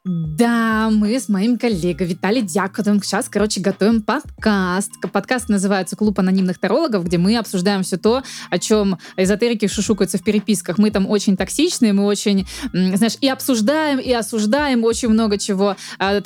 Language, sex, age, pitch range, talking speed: Russian, female, 20-39, 195-230 Hz, 155 wpm